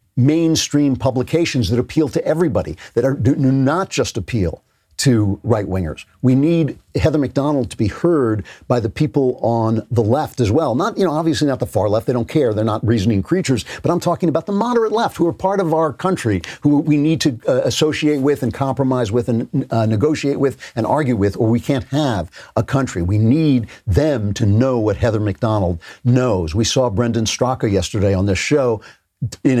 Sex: male